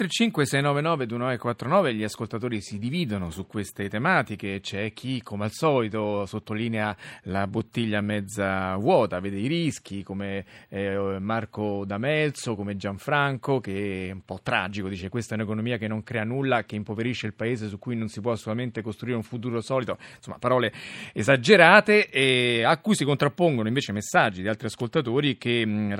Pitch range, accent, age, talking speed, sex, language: 105-125 Hz, native, 30-49, 160 wpm, male, Italian